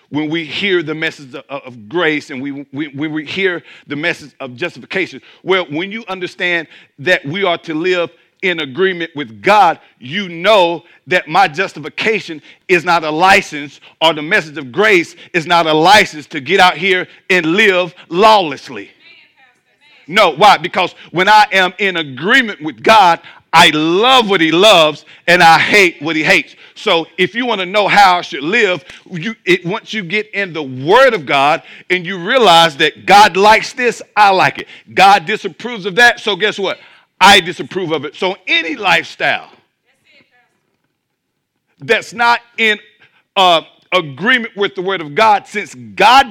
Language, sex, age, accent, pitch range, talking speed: English, male, 50-69, American, 155-200 Hz, 170 wpm